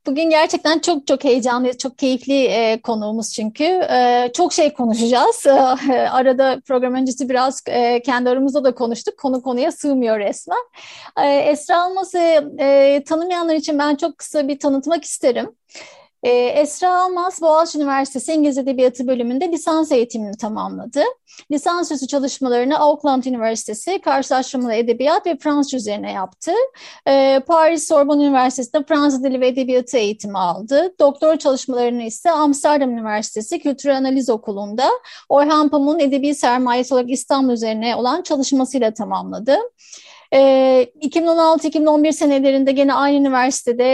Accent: native